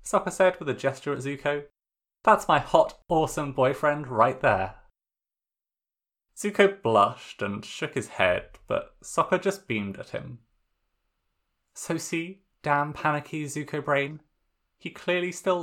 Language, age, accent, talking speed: English, 20-39, British, 135 wpm